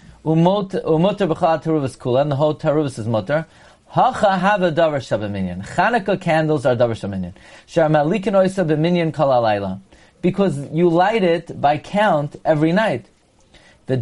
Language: English